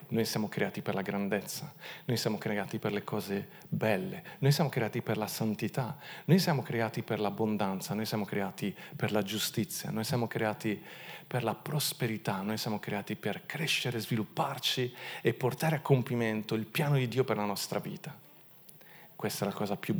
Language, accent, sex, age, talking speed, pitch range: Italian, native, male, 40-59, 175 wpm, 110-170 Hz